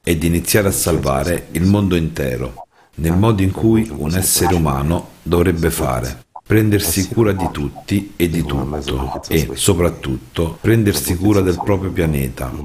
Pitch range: 70-95 Hz